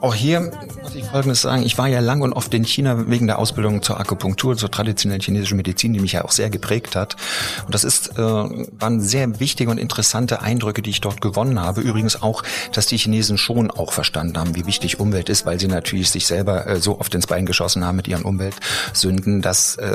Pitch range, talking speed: 95-110 Hz, 215 wpm